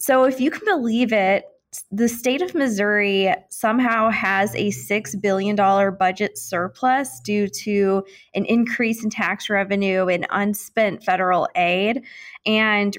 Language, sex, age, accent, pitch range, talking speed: English, female, 20-39, American, 195-220 Hz, 135 wpm